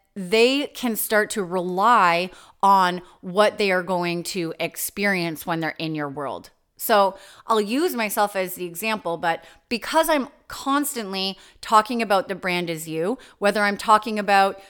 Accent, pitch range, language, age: American, 185-235 Hz, English, 30-49